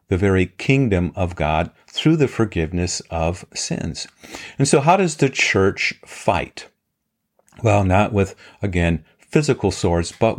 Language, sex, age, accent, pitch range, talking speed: English, male, 50-69, American, 80-110 Hz, 140 wpm